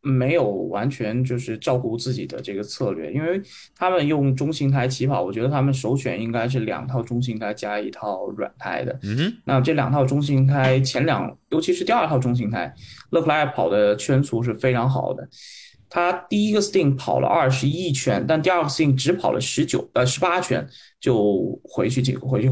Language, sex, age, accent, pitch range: Chinese, male, 20-39, native, 125-155 Hz